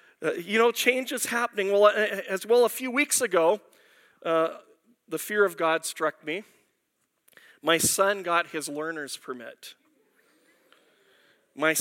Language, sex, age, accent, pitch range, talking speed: English, male, 40-59, American, 160-230 Hz, 140 wpm